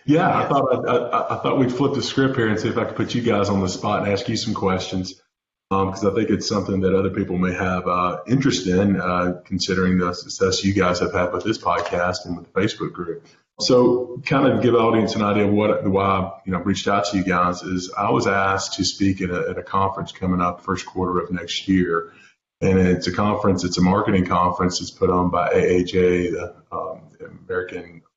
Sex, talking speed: male, 235 wpm